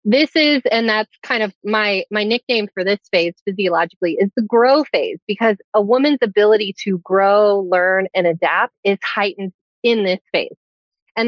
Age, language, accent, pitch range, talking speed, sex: 30-49, English, American, 185-235 Hz, 170 wpm, female